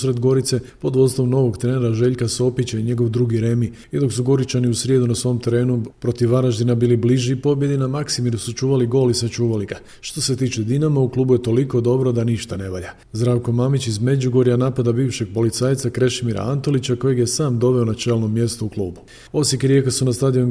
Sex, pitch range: male, 120-130 Hz